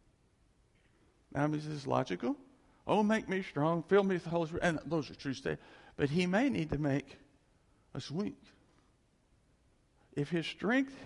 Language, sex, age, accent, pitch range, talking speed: English, male, 60-79, American, 115-165 Hz, 165 wpm